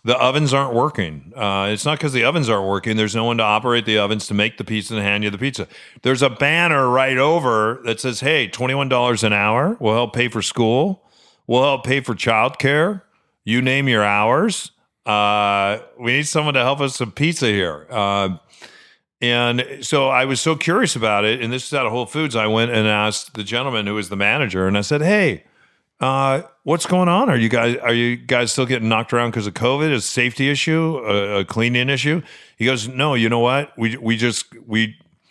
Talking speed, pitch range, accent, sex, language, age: 220 wpm, 110-135 Hz, American, male, English, 40-59